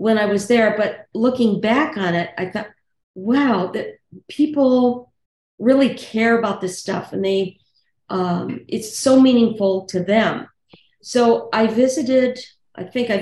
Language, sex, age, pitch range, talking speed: English, female, 50-69, 190-245 Hz, 150 wpm